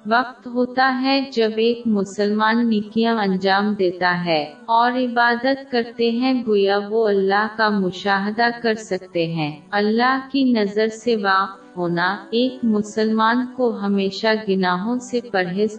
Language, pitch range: Urdu, 195-245 Hz